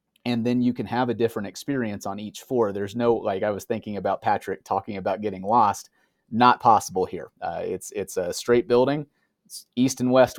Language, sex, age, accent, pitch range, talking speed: English, male, 30-49, American, 100-120 Hz, 210 wpm